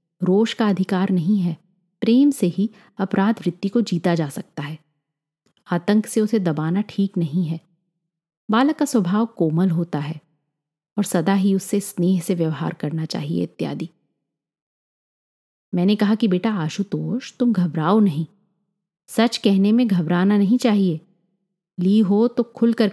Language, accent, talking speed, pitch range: Hindi, native, 145 wpm, 170-220 Hz